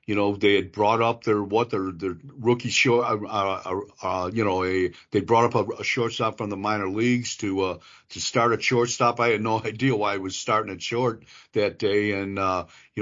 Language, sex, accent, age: English, male, American, 50-69